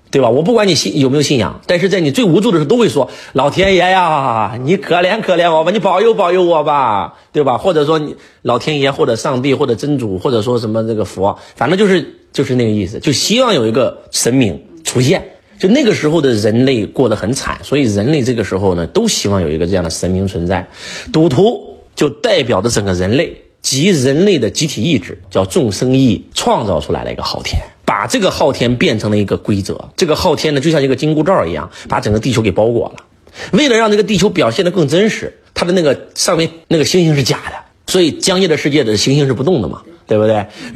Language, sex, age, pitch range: Chinese, male, 30-49, 100-155 Hz